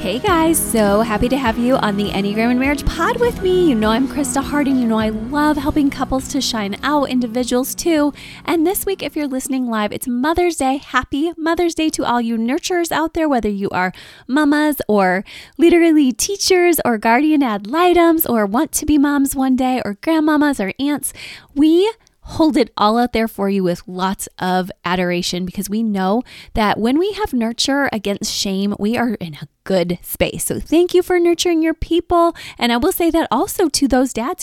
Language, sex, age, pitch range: English, female, 20-39, 200-300 Hz